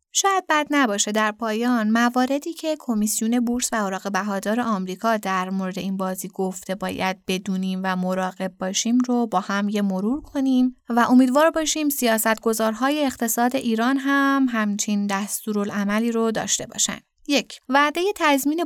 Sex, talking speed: female, 145 wpm